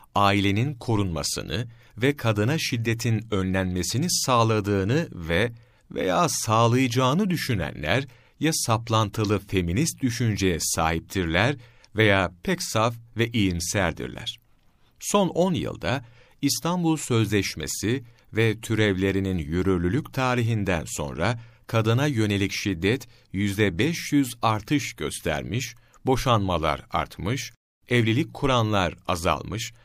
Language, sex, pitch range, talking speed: Turkish, male, 95-125 Hz, 85 wpm